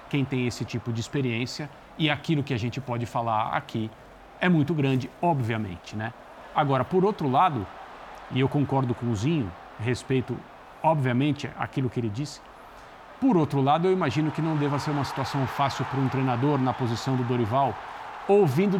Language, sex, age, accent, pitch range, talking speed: Portuguese, male, 50-69, Brazilian, 130-175 Hz, 175 wpm